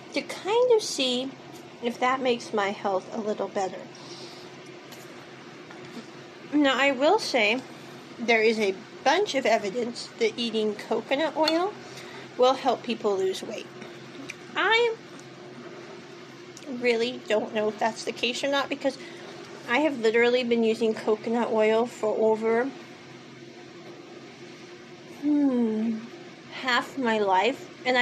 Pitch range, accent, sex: 215-270 Hz, American, female